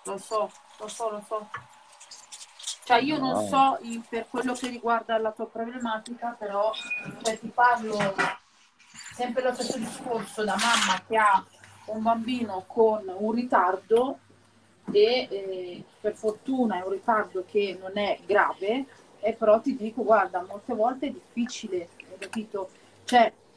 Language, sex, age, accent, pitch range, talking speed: Italian, female, 30-49, native, 205-250 Hz, 145 wpm